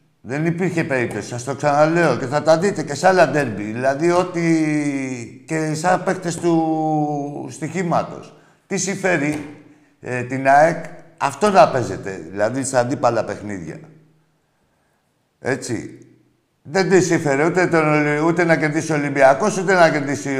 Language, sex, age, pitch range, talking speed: Greek, male, 60-79, 120-165 Hz, 135 wpm